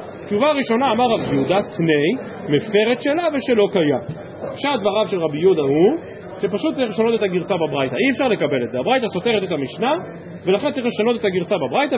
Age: 40-59